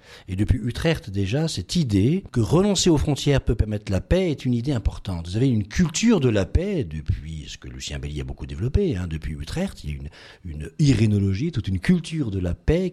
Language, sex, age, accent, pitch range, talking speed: French, male, 50-69, French, 85-120 Hz, 220 wpm